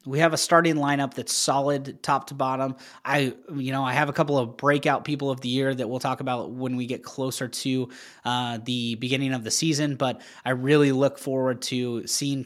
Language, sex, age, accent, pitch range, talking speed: English, male, 20-39, American, 120-140 Hz, 215 wpm